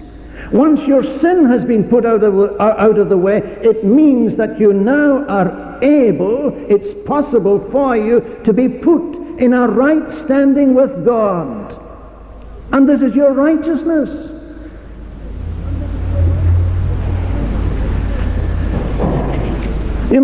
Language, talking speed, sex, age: English, 115 wpm, male, 60-79